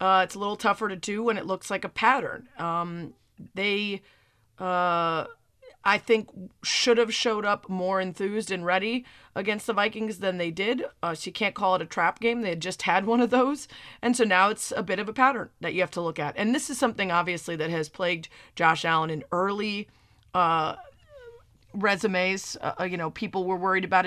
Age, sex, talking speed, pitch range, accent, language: 30-49, female, 210 wpm, 175-225 Hz, American, English